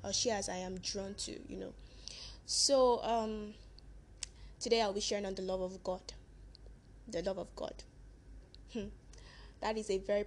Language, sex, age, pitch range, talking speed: English, female, 10-29, 190-220 Hz, 160 wpm